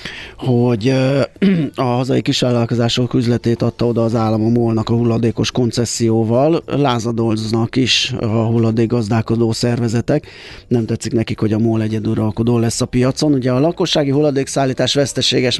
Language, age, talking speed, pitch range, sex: Hungarian, 30-49, 140 wpm, 115-135 Hz, male